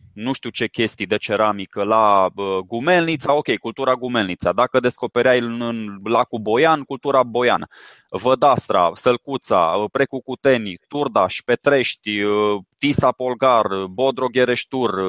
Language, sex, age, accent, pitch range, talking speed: Romanian, male, 20-39, native, 115-150 Hz, 105 wpm